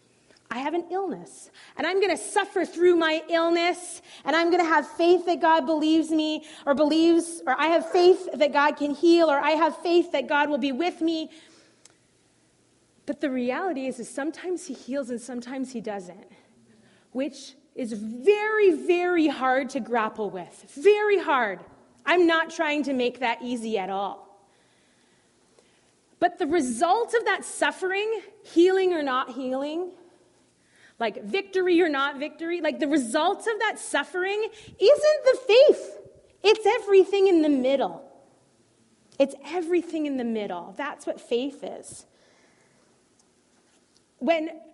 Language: English